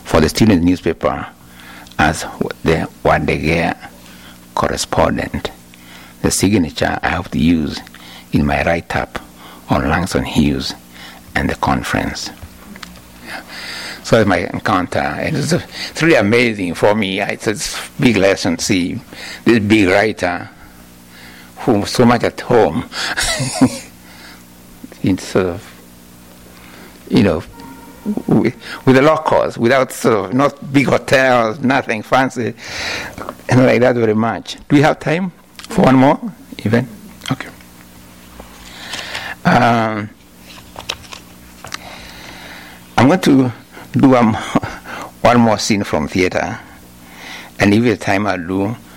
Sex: male